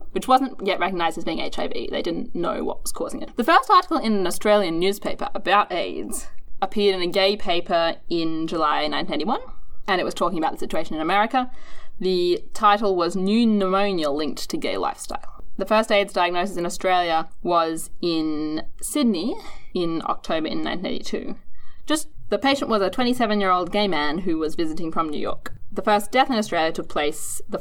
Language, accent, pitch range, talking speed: English, Australian, 165-220 Hz, 185 wpm